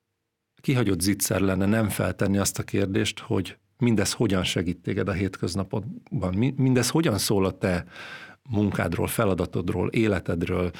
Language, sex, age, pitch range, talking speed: Hungarian, male, 50-69, 100-120 Hz, 130 wpm